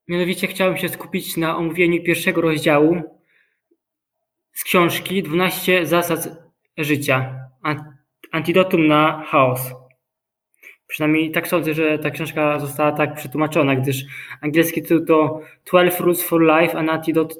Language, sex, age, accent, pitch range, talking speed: Polish, male, 20-39, native, 150-175 Hz, 120 wpm